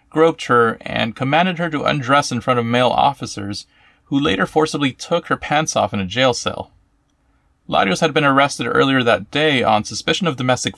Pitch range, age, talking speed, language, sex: 110-150 Hz, 30-49, 190 wpm, English, male